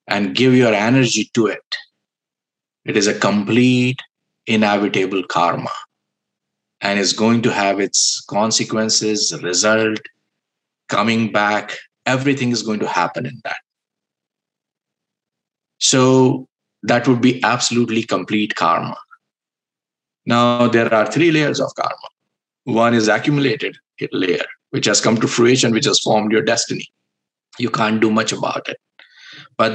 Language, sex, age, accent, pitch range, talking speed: English, male, 50-69, Indian, 110-130 Hz, 130 wpm